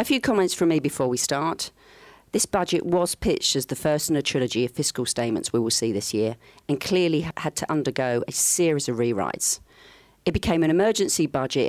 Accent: British